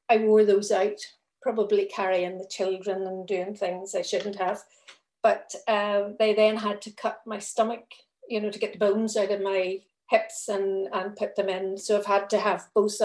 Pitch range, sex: 200-220 Hz, female